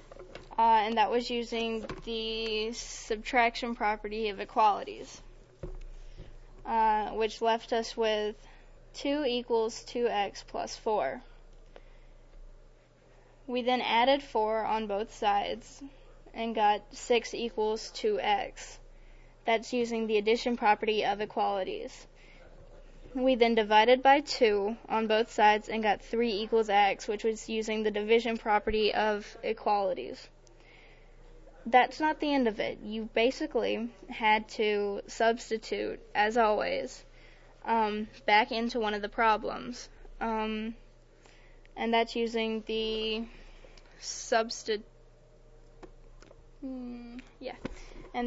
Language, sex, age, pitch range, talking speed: English, female, 10-29, 215-235 Hz, 100 wpm